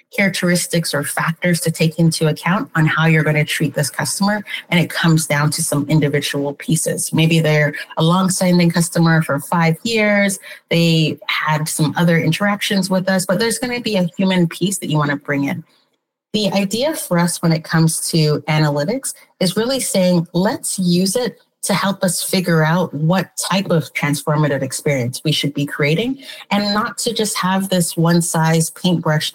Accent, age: American, 30-49